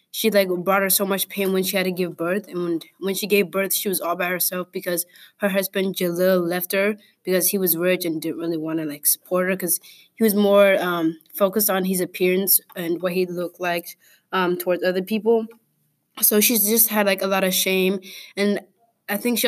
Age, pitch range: 20-39, 180-205 Hz